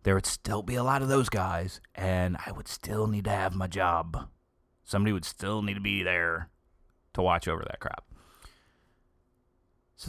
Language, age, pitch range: English, 30-49, 90-110 Hz